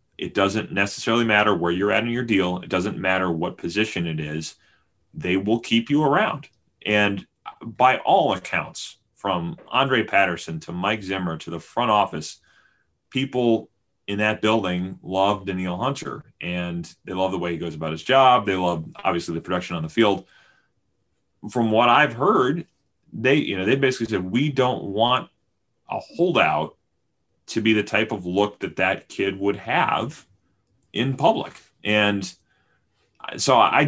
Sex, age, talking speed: male, 30-49, 160 wpm